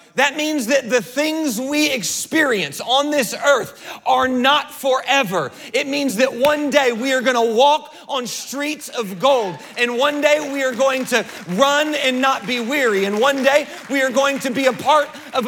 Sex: male